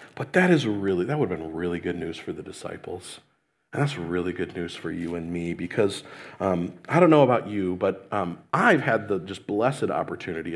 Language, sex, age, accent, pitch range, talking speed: English, male, 40-59, American, 105-165 Hz, 215 wpm